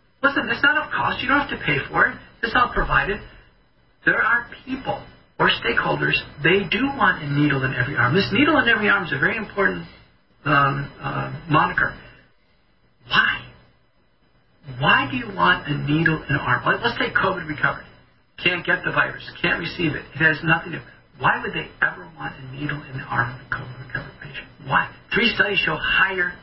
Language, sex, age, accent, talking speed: English, male, 50-69, American, 195 wpm